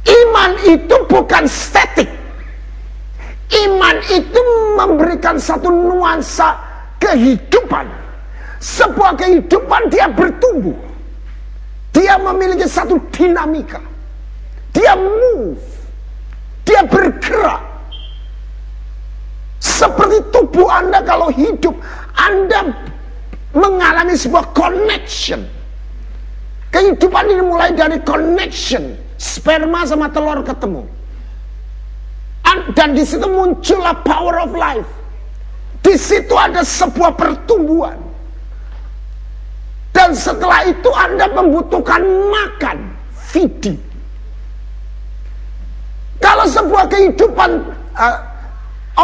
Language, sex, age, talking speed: Malay, male, 50-69, 75 wpm